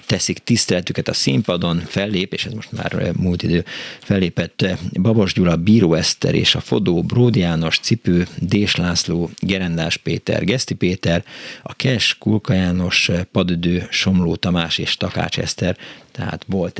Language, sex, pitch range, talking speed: Hungarian, male, 85-100 Hz, 140 wpm